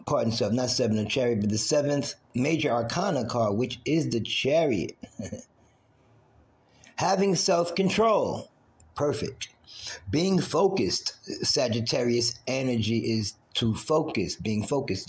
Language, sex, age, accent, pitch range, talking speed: English, male, 40-59, American, 115-150 Hz, 115 wpm